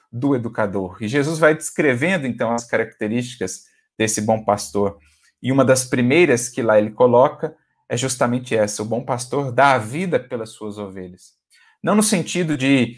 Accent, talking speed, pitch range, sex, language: Brazilian, 165 wpm, 110-145 Hz, male, Portuguese